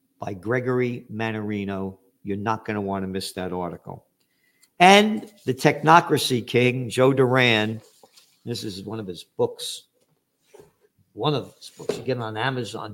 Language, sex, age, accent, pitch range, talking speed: English, male, 50-69, American, 110-135 Hz, 150 wpm